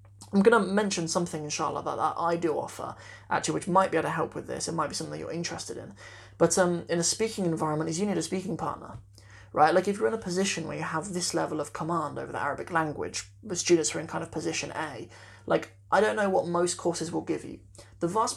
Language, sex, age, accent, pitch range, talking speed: English, male, 20-39, British, 115-180 Hz, 250 wpm